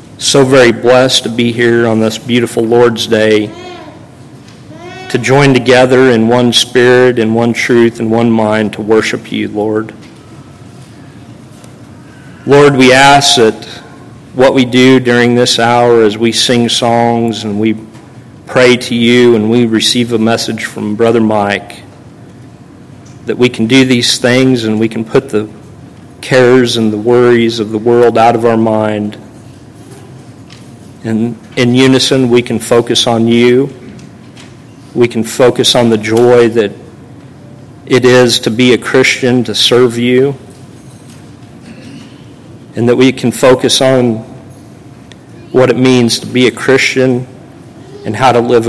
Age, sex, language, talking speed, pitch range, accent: 40-59, male, English, 145 wpm, 115-130 Hz, American